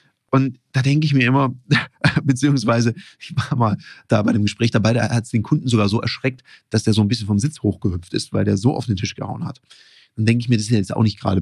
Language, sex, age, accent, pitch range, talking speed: German, male, 40-59, German, 115-140 Hz, 265 wpm